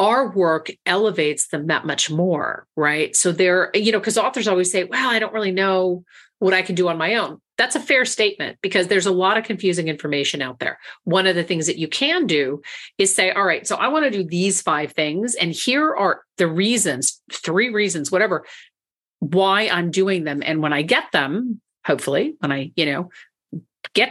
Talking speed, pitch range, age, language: 210 wpm, 155-210 Hz, 40-59, English